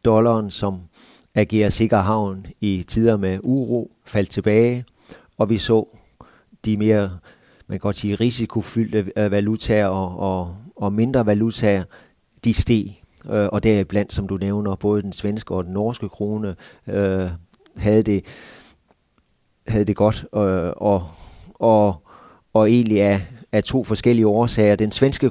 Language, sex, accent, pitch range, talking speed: Danish, male, native, 95-115 Hz, 140 wpm